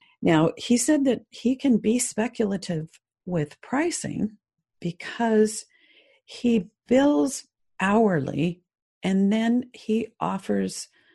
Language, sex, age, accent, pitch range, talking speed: English, female, 50-69, American, 145-205 Hz, 95 wpm